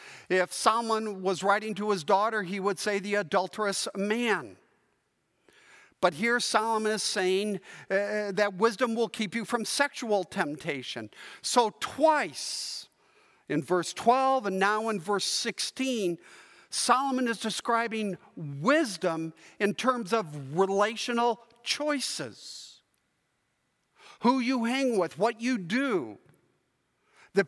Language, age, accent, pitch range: English, 50-69, American, 205-245 Hz